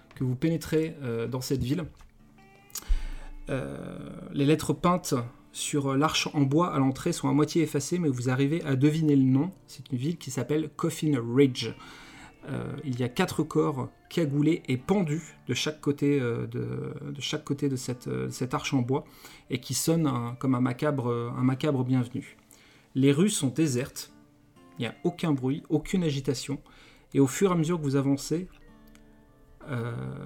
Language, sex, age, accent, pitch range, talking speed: French, male, 30-49, French, 130-155 Hz, 180 wpm